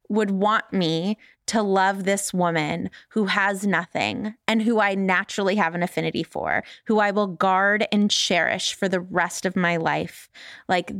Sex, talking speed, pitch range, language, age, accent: female, 170 wpm, 185-250 Hz, English, 20-39, American